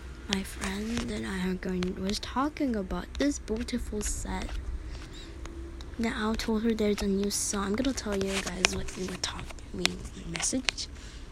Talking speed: 165 wpm